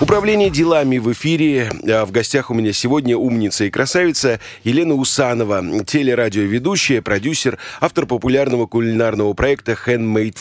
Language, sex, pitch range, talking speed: Russian, male, 110-145 Hz, 125 wpm